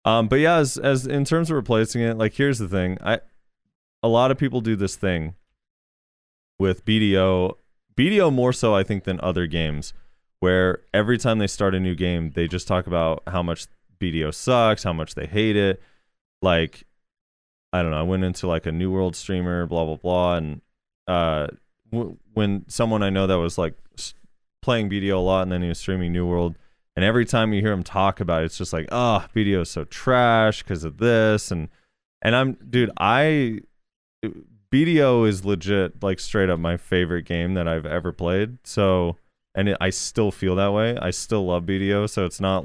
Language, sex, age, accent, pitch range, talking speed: English, male, 20-39, American, 85-110 Hz, 200 wpm